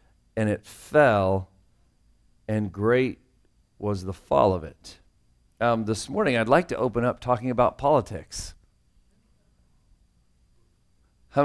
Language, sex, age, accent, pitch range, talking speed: English, male, 40-59, American, 100-145 Hz, 115 wpm